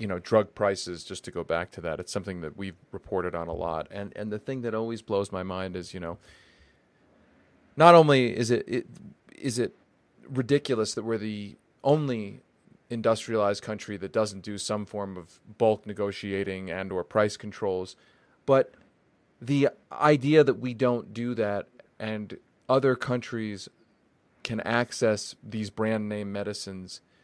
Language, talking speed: English, 160 wpm